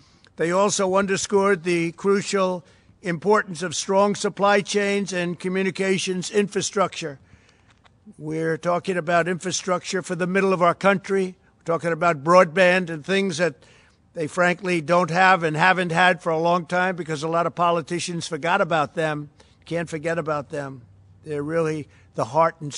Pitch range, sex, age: 160-185 Hz, male, 60-79